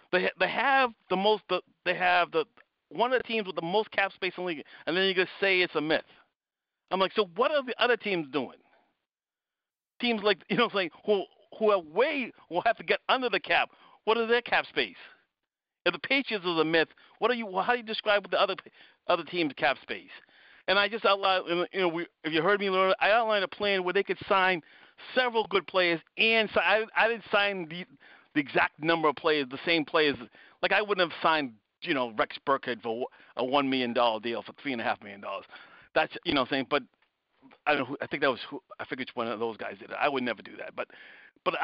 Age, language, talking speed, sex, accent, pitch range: 50-69, English, 235 wpm, male, American, 160-215 Hz